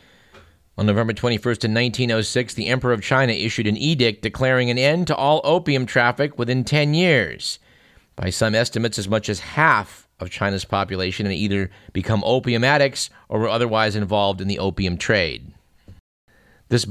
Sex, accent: male, American